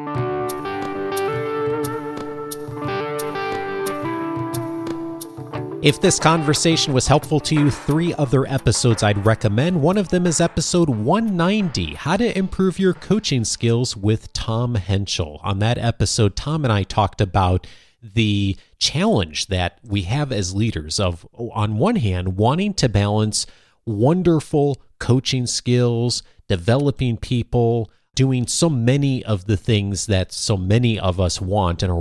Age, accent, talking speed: 40-59, American, 125 wpm